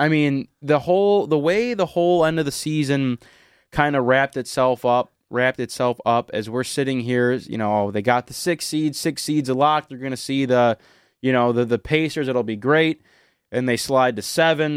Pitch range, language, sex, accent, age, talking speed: 120-150 Hz, English, male, American, 20-39, 210 wpm